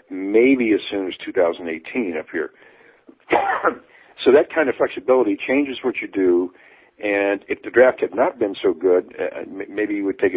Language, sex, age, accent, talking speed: English, male, 50-69, American, 175 wpm